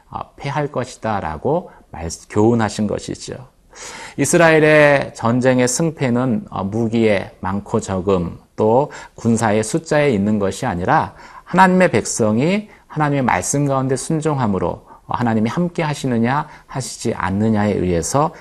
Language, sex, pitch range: Korean, male, 100-150 Hz